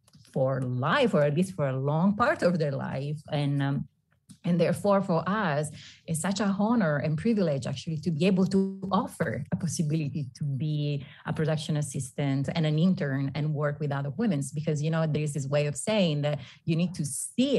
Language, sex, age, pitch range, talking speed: English, female, 30-49, 150-195 Hz, 200 wpm